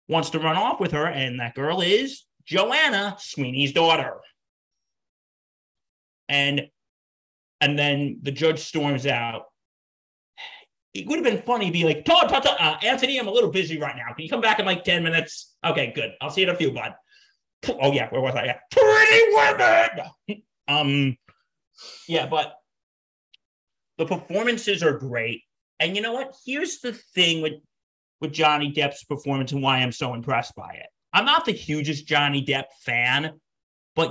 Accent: American